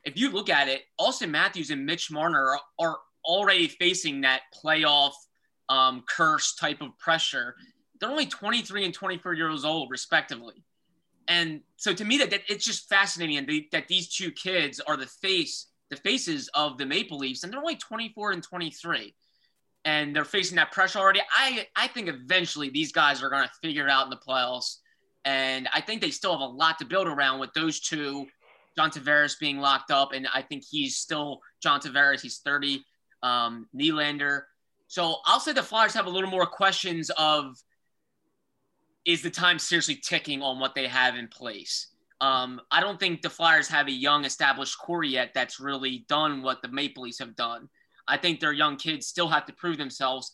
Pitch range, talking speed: 140-185 Hz, 190 wpm